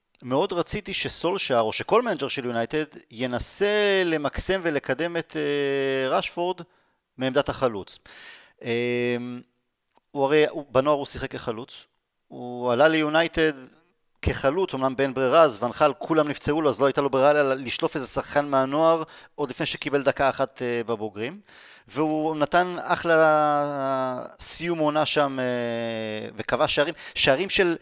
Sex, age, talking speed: male, 30-49, 135 wpm